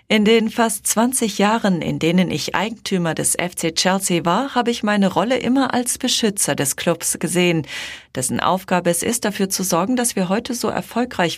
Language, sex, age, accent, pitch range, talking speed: German, female, 40-59, German, 170-230 Hz, 185 wpm